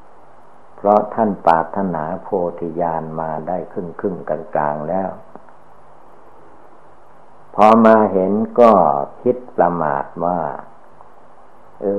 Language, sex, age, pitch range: Thai, male, 60-79, 85-100 Hz